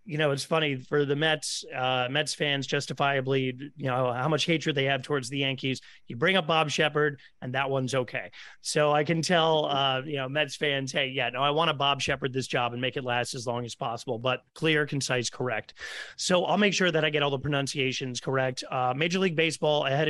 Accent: American